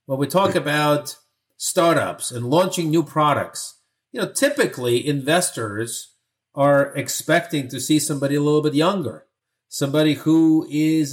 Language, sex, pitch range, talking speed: English, male, 135-165 Hz, 135 wpm